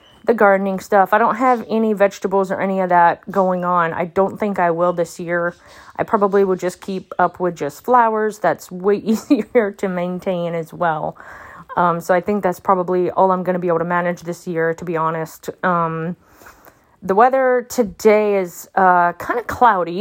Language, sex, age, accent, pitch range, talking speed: English, female, 30-49, American, 175-215 Hz, 195 wpm